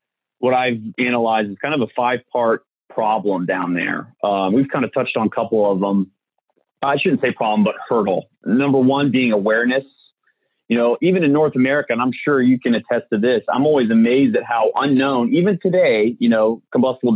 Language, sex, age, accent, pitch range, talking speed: English, male, 30-49, American, 110-145 Hz, 195 wpm